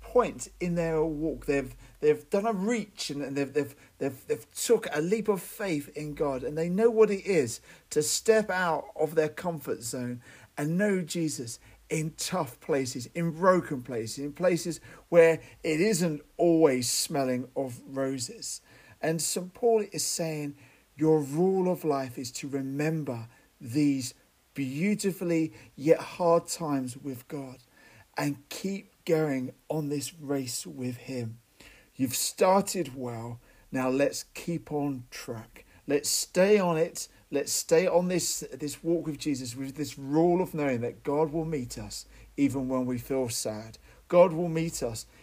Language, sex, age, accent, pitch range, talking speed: English, male, 40-59, British, 130-170 Hz, 155 wpm